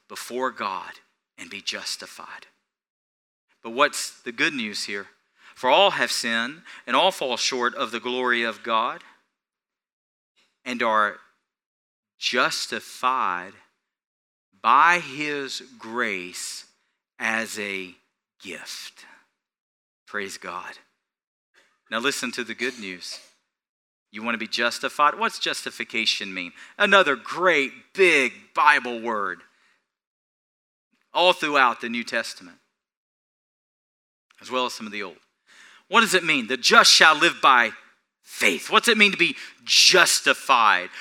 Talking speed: 120 wpm